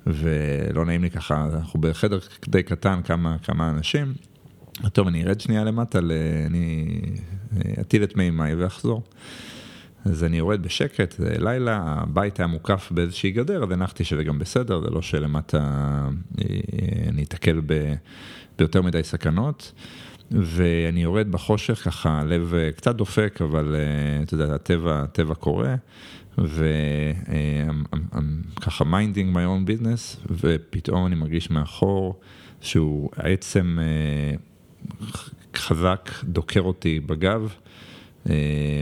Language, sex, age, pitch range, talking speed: Hebrew, male, 50-69, 75-95 Hz, 115 wpm